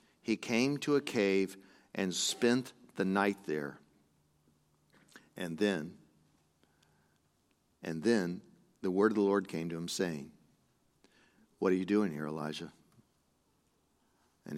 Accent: American